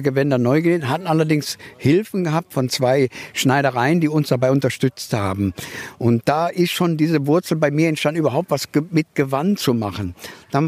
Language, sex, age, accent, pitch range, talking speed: German, male, 60-79, German, 130-175 Hz, 175 wpm